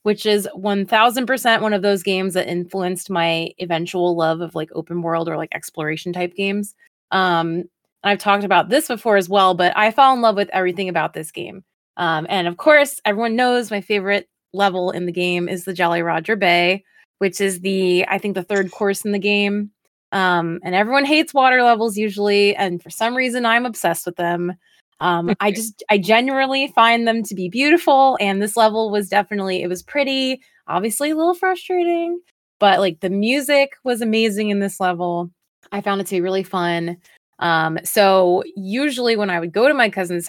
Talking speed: 195 wpm